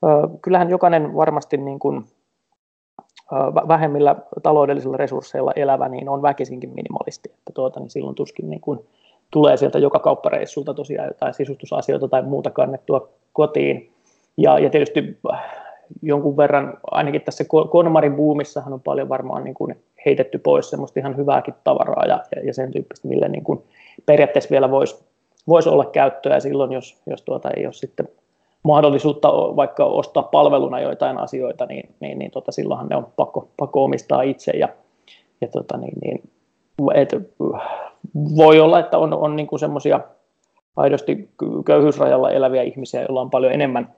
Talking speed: 150 wpm